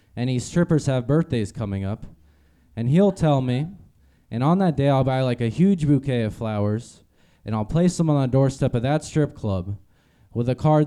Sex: male